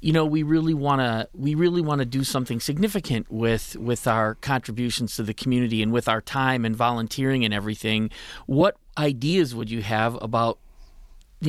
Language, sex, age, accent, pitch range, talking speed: English, male, 40-59, American, 120-170 Hz, 170 wpm